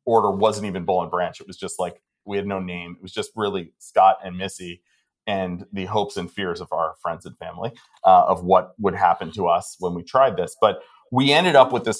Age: 30-49